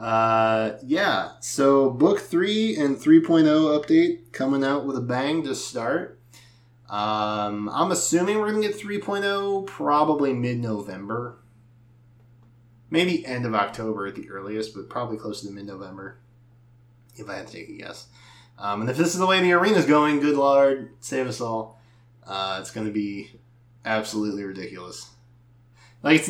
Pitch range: 110-145 Hz